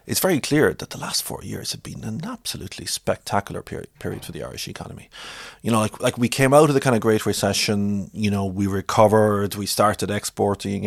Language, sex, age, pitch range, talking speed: English, male, 30-49, 100-120 Hz, 215 wpm